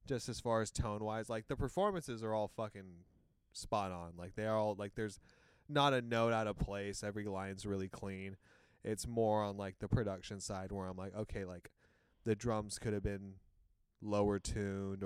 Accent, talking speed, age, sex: American, 185 wpm, 20-39, male